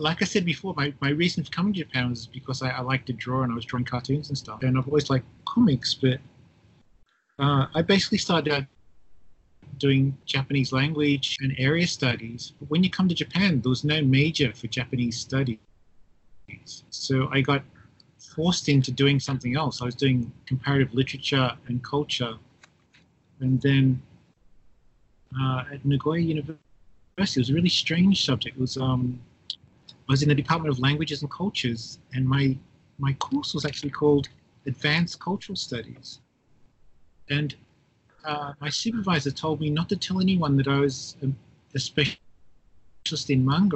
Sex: male